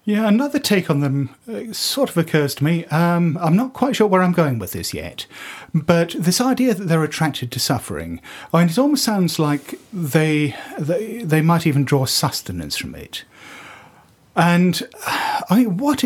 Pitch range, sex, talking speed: 125-170 Hz, male, 180 wpm